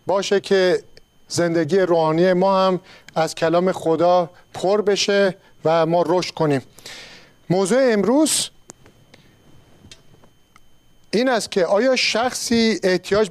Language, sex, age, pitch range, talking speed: Persian, male, 50-69, 165-205 Hz, 105 wpm